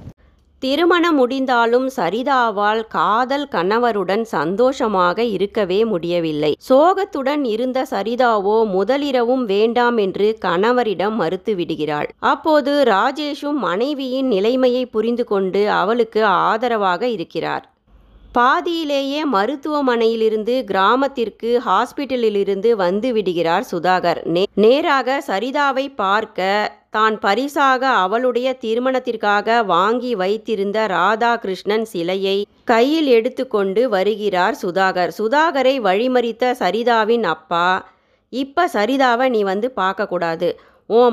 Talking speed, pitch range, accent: 80 wpm, 200-260 Hz, native